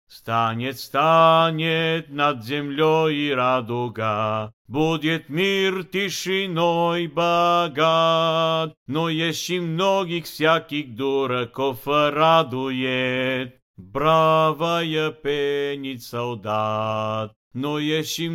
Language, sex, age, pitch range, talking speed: Bulgarian, male, 50-69, 115-160 Hz, 70 wpm